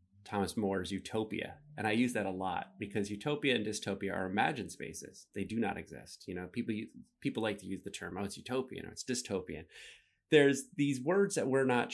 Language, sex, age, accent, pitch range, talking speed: English, male, 30-49, American, 100-125 Hz, 205 wpm